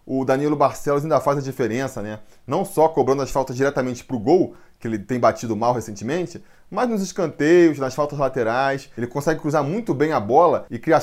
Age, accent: 20-39, Brazilian